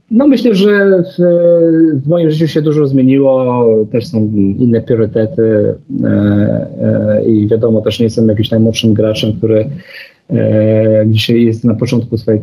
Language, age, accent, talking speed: Polish, 30-49, native, 150 wpm